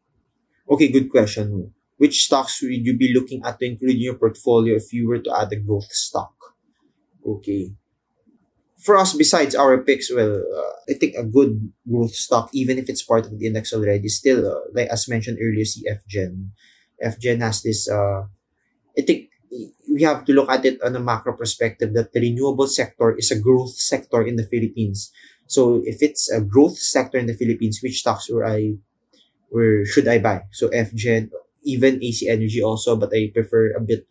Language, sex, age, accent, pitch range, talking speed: English, male, 20-39, Filipino, 110-130 Hz, 190 wpm